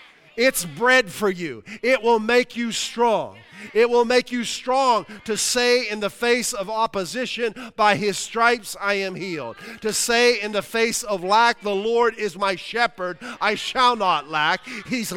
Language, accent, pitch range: English, American, 145-220 Hz